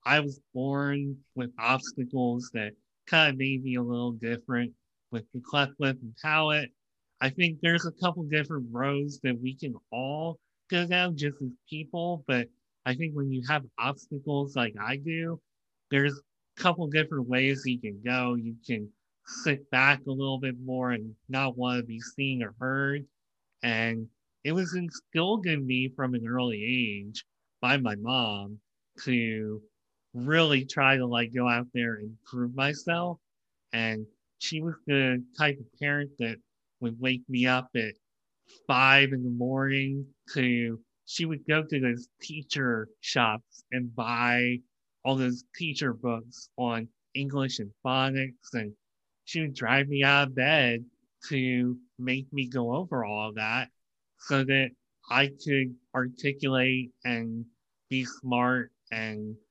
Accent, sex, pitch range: American, male, 120-140 Hz